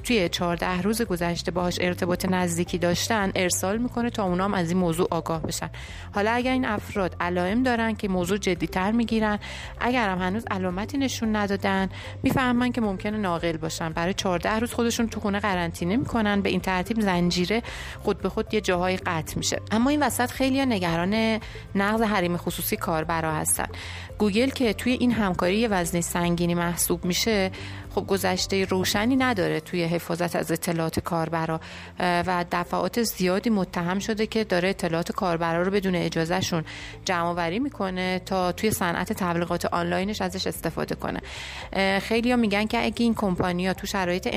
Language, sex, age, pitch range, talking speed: English, female, 30-49, 175-215 Hz, 155 wpm